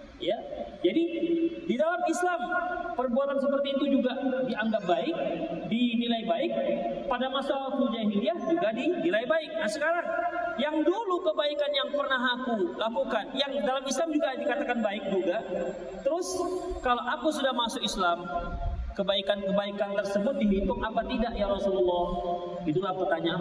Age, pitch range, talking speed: 40-59, 200-285 Hz, 135 wpm